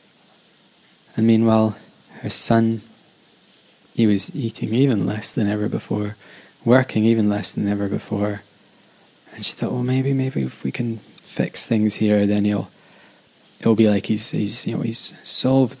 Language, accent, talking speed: English, British, 155 wpm